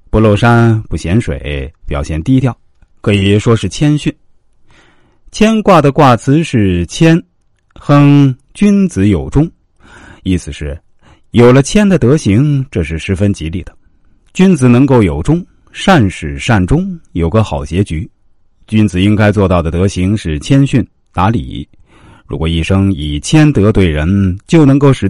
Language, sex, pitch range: Chinese, male, 85-130 Hz